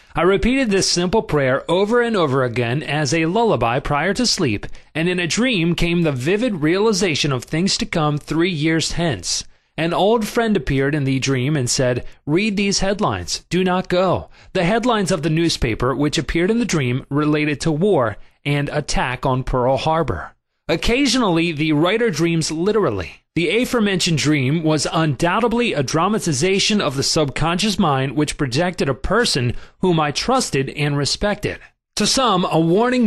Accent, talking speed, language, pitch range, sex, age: American, 165 wpm, English, 145-195 Hz, male, 30-49